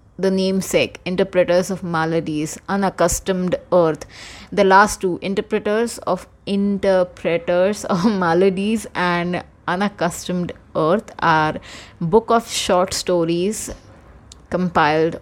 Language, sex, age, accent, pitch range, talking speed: Hindi, female, 20-39, native, 165-195 Hz, 100 wpm